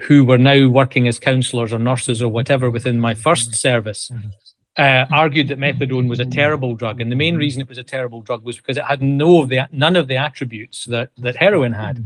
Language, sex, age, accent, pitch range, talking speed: English, male, 40-59, British, 120-145 Hz, 230 wpm